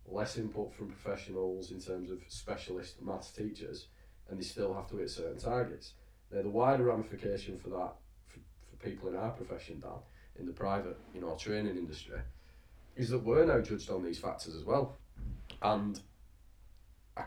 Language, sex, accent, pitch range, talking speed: English, male, British, 95-115 Hz, 175 wpm